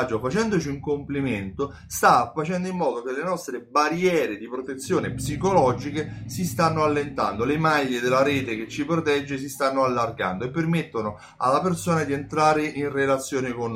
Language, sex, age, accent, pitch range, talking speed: Italian, male, 30-49, native, 110-165 Hz, 155 wpm